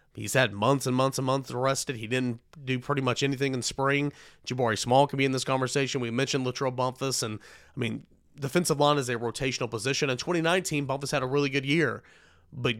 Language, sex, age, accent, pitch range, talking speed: English, male, 30-49, American, 120-145 Hz, 210 wpm